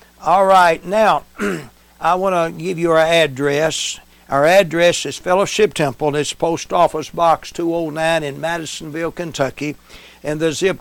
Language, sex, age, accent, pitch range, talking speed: English, male, 60-79, American, 145-170 Hz, 150 wpm